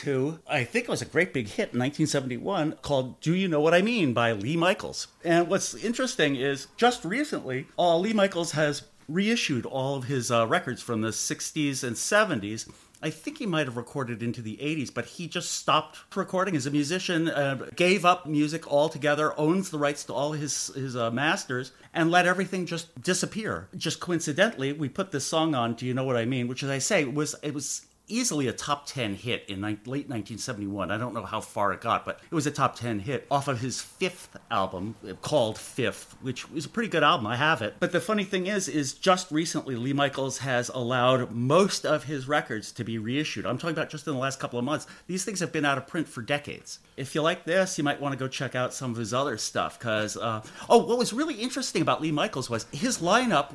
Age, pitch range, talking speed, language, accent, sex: 40-59, 125-170 Hz, 225 wpm, English, American, male